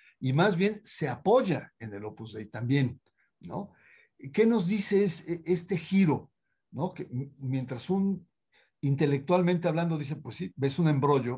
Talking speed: 155 wpm